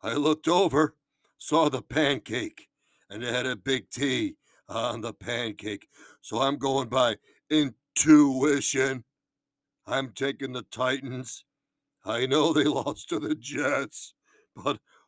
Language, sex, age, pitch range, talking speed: English, male, 60-79, 130-155 Hz, 125 wpm